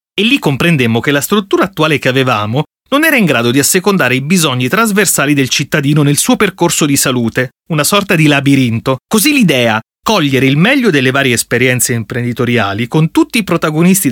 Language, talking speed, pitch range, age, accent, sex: Italian, 180 wpm, 130-180 Hz, 30-49, native, male